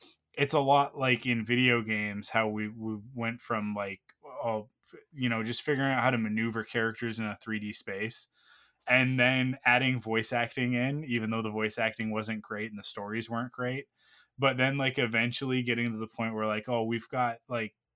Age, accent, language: 20-39, American, English